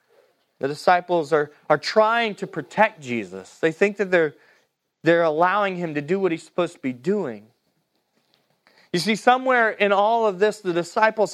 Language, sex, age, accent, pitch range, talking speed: English, male, 30-49, American, 150-215 Hz, 170 wpm